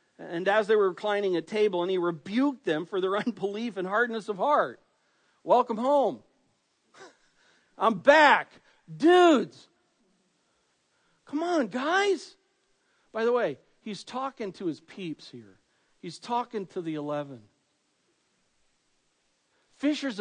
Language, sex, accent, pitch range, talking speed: English, male, American, 175-270 Hz, 120 wpm